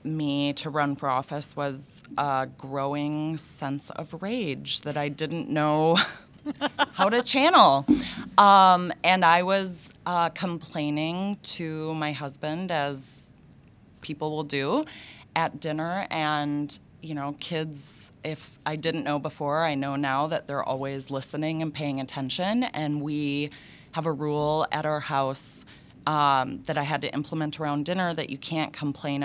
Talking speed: 150 wpm